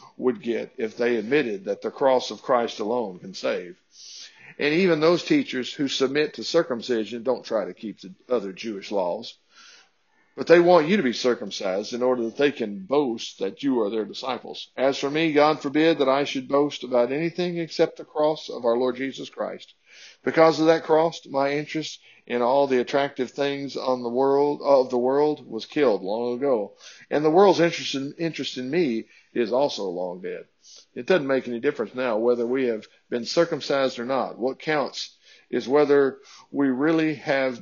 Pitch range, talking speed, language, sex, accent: 125-155 Hz, 190 wpm, English, male, American